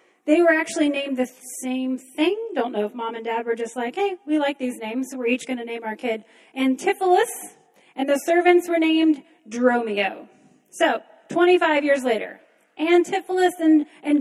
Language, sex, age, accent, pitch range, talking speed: English, female, 30-49, American, 220-305 Hz, 175 wpm